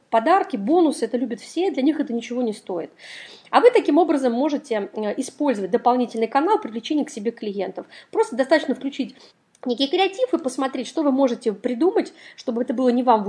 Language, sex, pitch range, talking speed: Russian, female, 225-290 Hz, 185 wpm